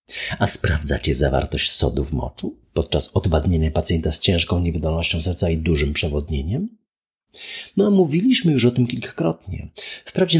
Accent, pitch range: native, 80-125 Hz